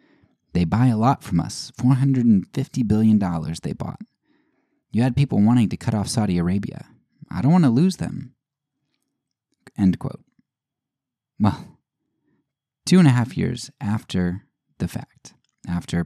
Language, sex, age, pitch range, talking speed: English, male, 20-39, 85-120 Hz, 140 wpm